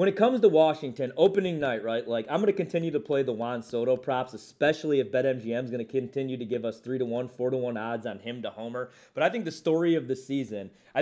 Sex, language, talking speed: male, English, 260 wpm